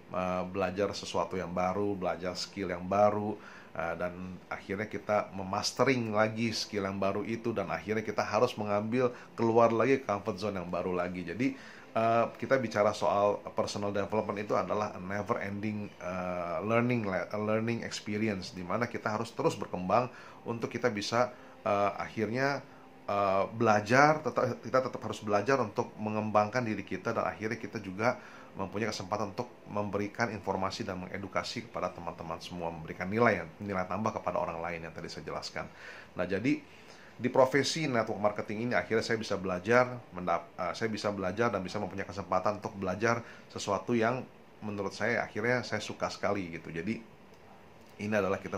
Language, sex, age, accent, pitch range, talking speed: Indonesian, male, 30-49, native, 95-115 Hz, 155 wpm